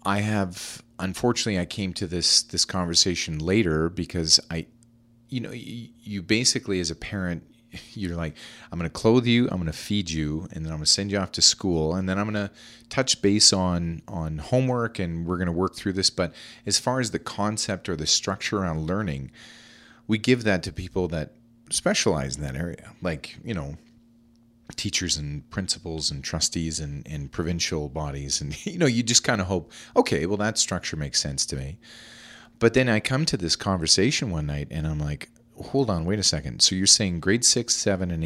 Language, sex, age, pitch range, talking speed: English, male, 40-59, 80-115 Hz, 205 wpm